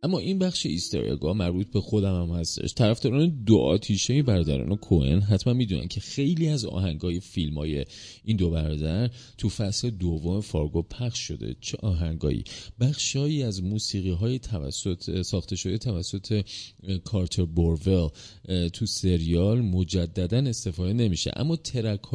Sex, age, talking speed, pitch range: male, 30-49, 135 wpm, 85-120 Hz